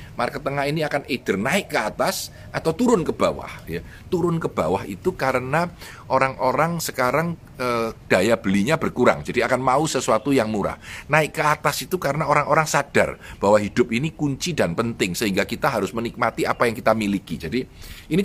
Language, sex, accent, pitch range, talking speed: Indonesian, male, native, 105-160 Hz, 175 wpm